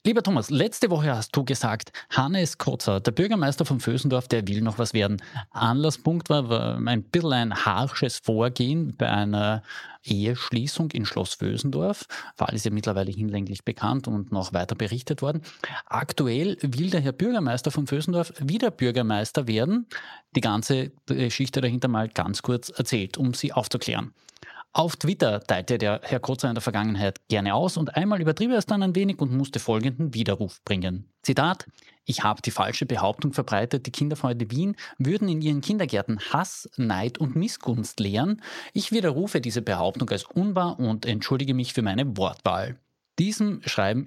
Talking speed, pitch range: 165 wpm, 110-150 Hz